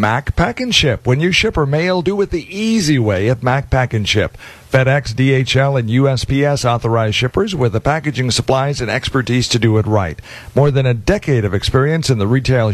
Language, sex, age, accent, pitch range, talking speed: English, male, 50-69, American, 115-155 Hz, 205 wpm